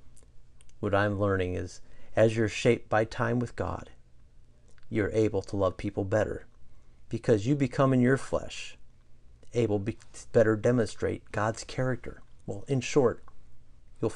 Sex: male